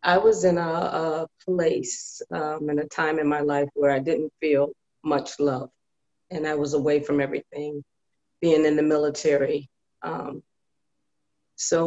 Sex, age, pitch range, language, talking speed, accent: female, 40-59, 145-165 Hz, English, 155 wpm, American